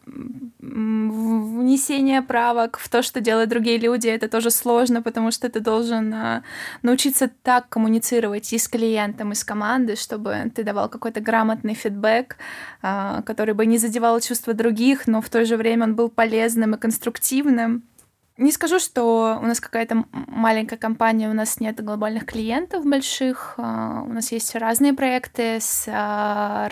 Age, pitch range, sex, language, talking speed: 20-39, 215-245 Hz, female, Russian, 150 wpm